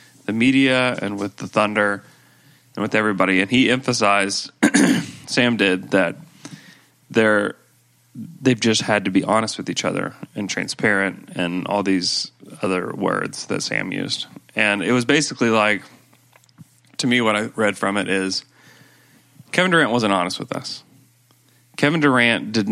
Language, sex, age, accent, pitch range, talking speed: English, male, 30-49, American, 100-125 Hz, 150 wpm